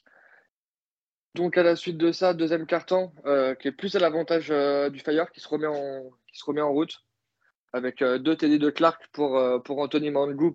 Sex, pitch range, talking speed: male, 125-150 Hz, 215 wpm